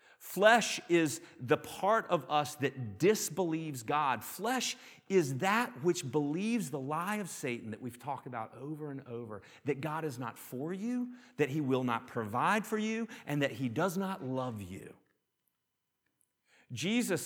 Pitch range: 115-170 Hz